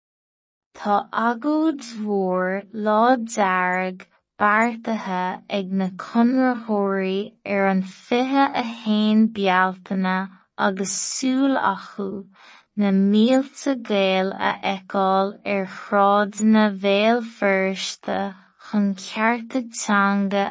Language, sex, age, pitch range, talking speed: English, female, 20-39, 195-230 Hz, 85 wpm